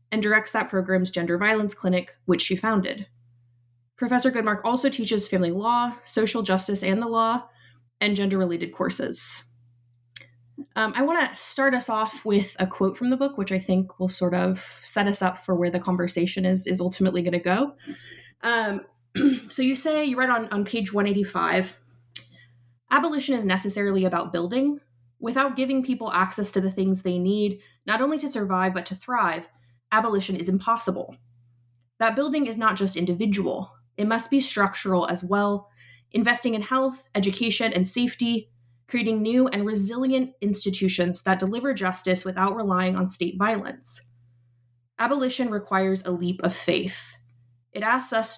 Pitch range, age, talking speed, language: 180-230 Hz, 20-39, 160 wpm, English